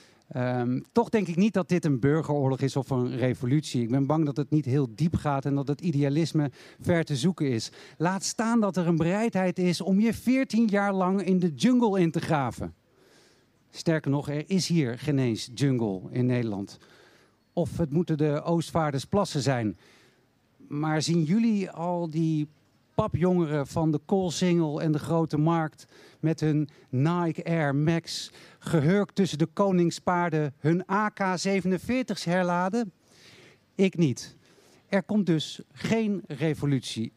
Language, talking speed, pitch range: Dutch, 155 wpm, 135-175 Hz